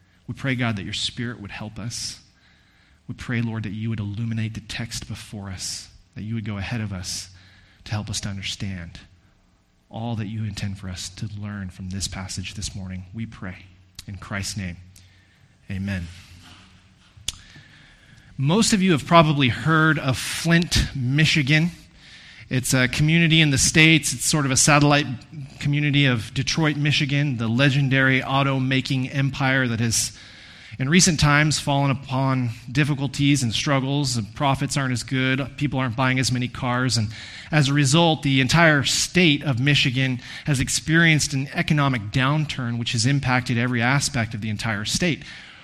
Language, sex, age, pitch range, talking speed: English, male, 30-49, 105-140 Hz, 160 wpm